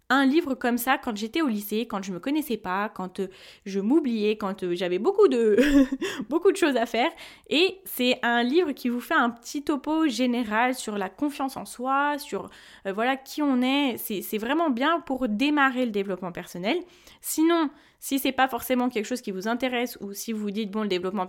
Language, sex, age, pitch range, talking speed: French, female, 20-39, 200-270 Hz, 205 wpm